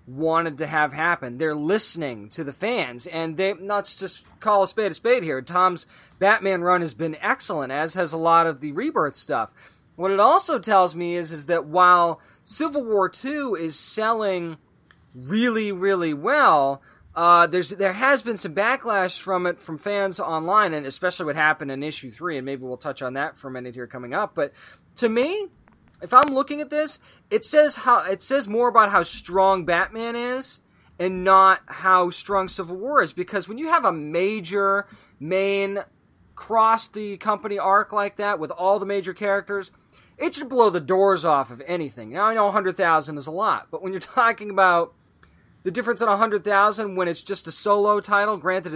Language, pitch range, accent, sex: English, 165-215 Hz, American, male